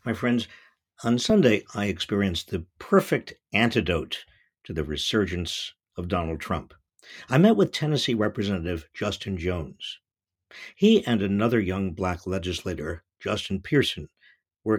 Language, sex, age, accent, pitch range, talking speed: English, male, 50-69, American, 90-115 Hz, 125 wpm